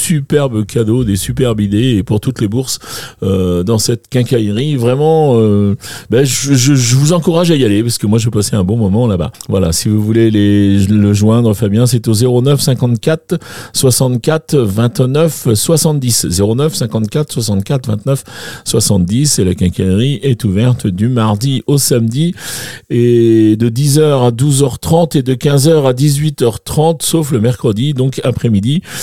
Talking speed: 165 wpm